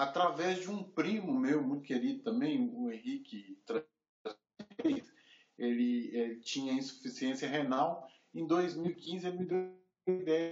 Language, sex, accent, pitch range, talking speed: Portuguese, male, Brazilian, 145-205 Hz, 125 wpm